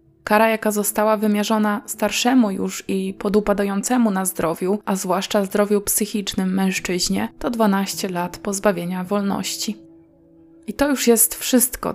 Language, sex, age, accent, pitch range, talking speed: Polish, female, 20-39, native, 195-215 Hz, 125 wpm